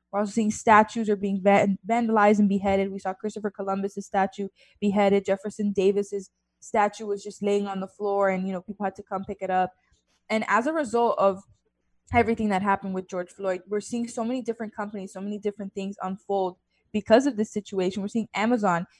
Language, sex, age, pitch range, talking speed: English, female, 20-39, 190-215 Hz, 200 wpm